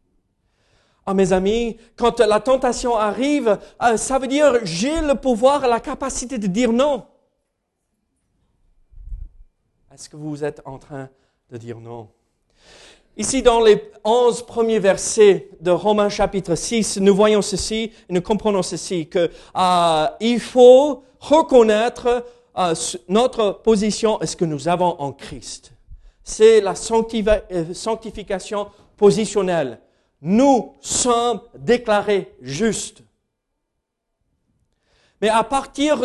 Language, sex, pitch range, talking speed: French, male, 185-250 Hz, 115 wpm